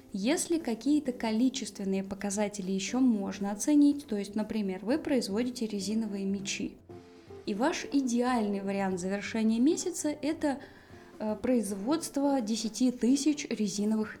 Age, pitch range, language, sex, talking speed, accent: 20-39, 205-270 Hz, Russian, female, 105 wpm, native